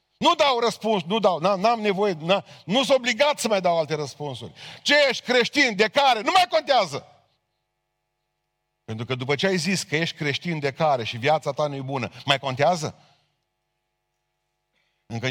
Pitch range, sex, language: 110-165 Hz, male, Romanian